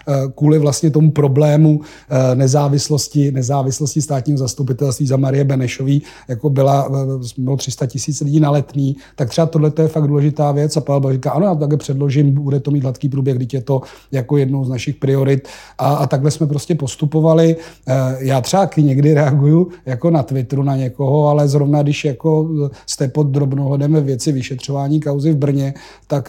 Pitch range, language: 130-150 Hz, Czech